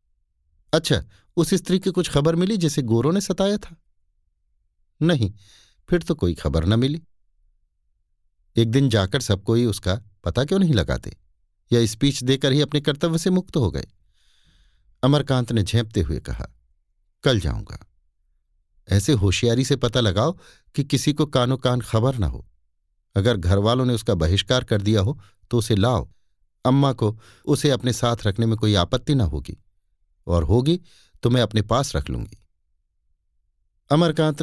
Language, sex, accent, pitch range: Hindi, male, native, 90-135 Hz